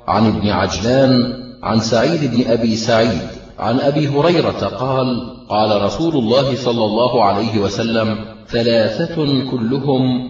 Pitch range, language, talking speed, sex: 115-140 Hz, Arabic, 120 wpm, male